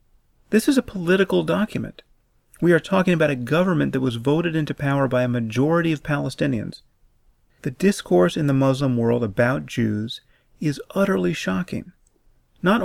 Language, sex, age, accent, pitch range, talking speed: English, male, 40-59, American, 120-165 Hz, 155 wpm